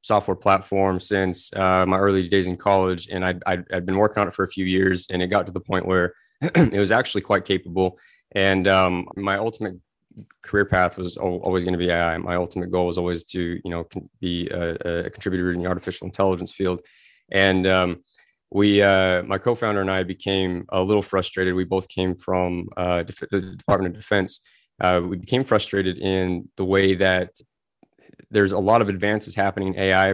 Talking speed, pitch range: 200 wpm, 90-100 Hz